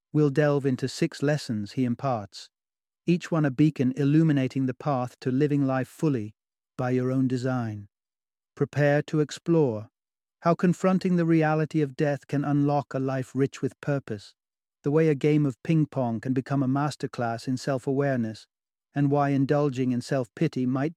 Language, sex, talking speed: English, male, 170 wpm